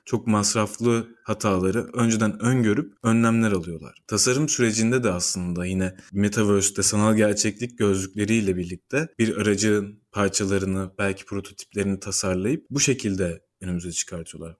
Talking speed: 110 wpm